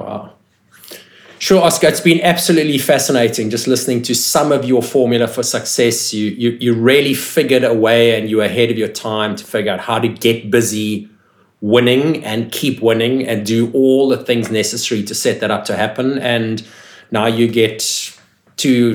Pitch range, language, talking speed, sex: 95-120 Hz, English, 185 wpm, male